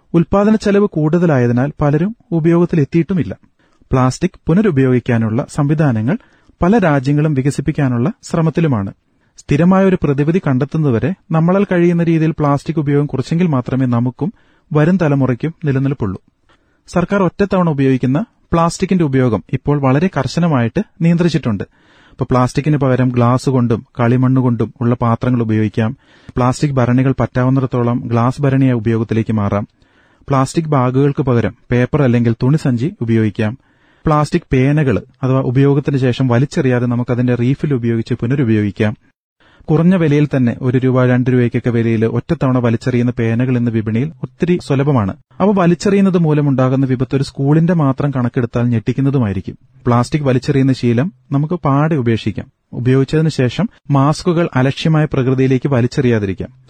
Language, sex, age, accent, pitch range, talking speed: Malayalam, male, 30-49, native, 125-155 Hz, 110 wpm